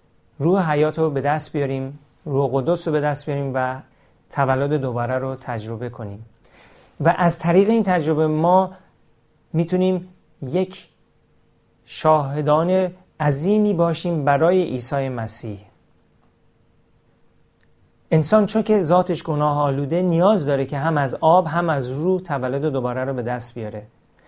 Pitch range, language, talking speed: 125-170 Hz, Persian, 130 wpm